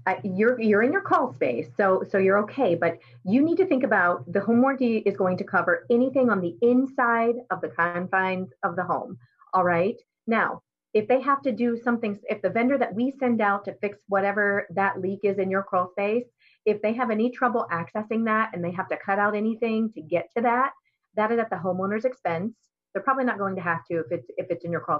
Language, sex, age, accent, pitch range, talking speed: English, female, 30-49, American, 185-225 Hz, 235 wpm